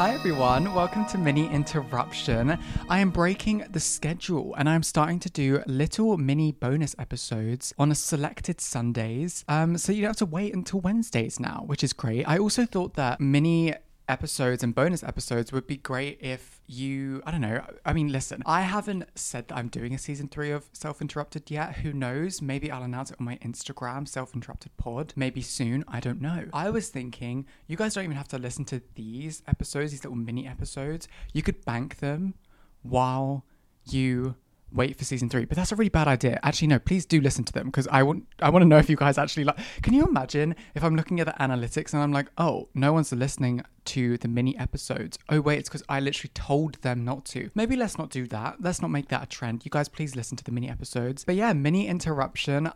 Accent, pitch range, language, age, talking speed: British, 130-160 Hz, English, 20-39, 215 wpm